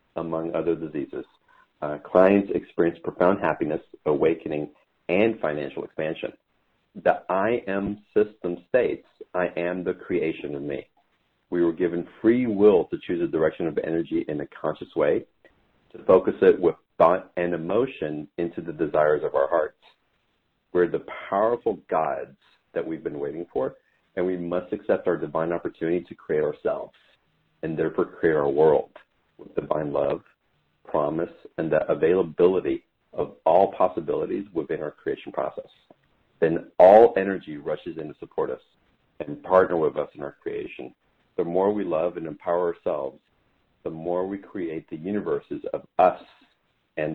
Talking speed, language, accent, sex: 150 wpm, English, American, male